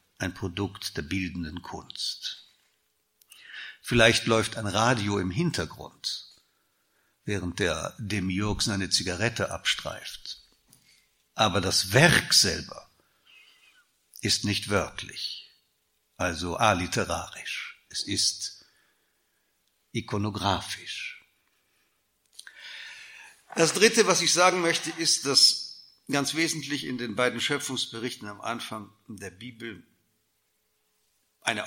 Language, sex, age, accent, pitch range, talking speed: German, male, 60-79, German, 100-140 Hz, 90 wpm